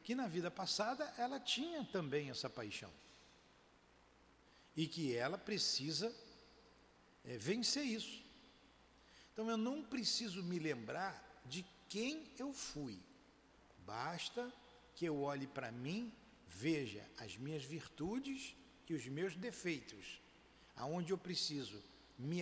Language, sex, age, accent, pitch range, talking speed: Portuguese, male, 60-79, Brazilian, 145-220 Hz, 115 wpm